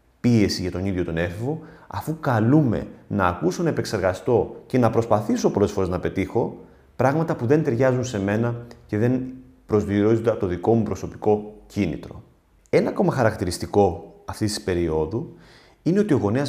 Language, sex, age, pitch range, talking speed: Greek, male, 30-49, 95-130 Hz, 155 wpm